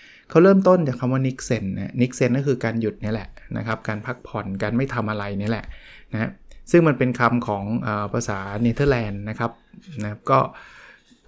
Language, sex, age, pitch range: Thai, male, 20-39, 110-140 Hz